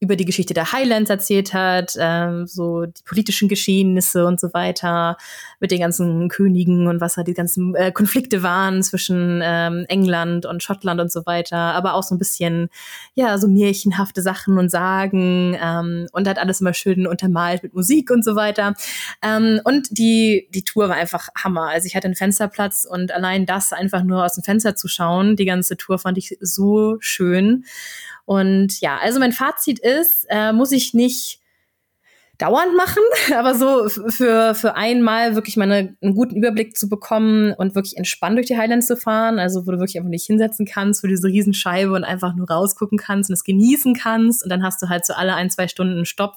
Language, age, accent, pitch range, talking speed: German, 20-39, German, 180-215 Hz, 200 wpm